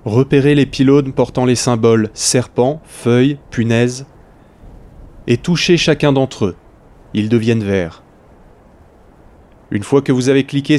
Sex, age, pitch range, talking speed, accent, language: male, 20-39, 100-135 Hz, 130 wpm, French, French